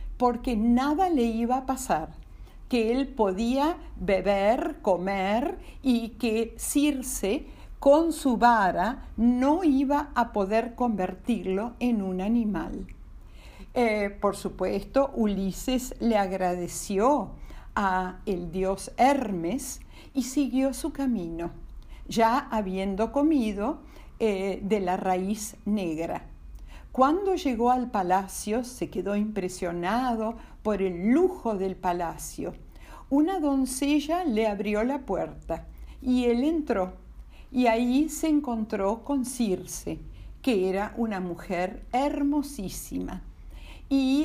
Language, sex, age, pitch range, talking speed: Spanish, female, 50-69, 190-265 Hz, 110 wpm